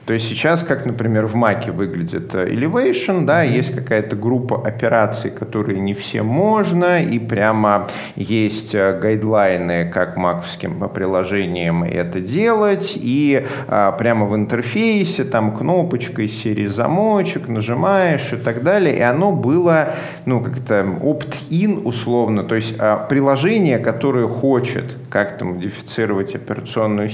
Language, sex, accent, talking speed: Russian, male, native, 120 wpm